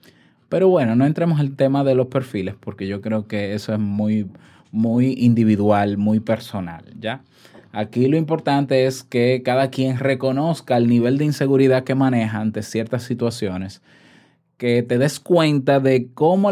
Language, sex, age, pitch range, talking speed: Spanish, male, 20-39, 115-150 Hz, 160 wpm